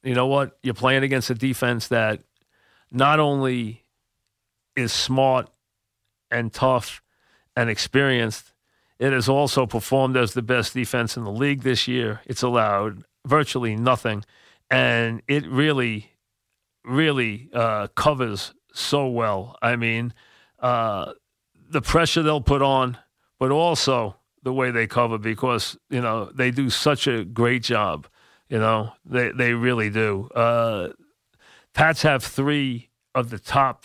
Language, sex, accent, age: English, male, American, 40-59